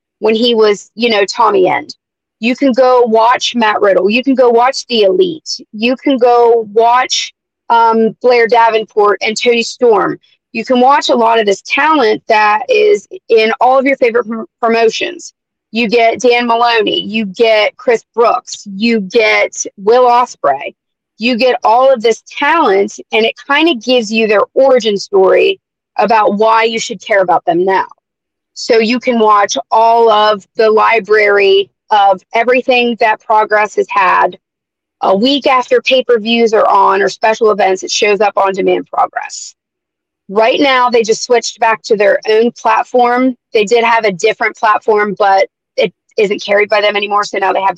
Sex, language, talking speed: female, English, 175 wpm